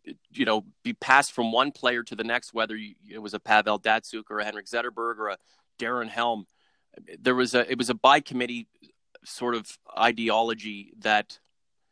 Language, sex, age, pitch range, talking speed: English, male, 30-49, 110-130 Hz, 180 wpm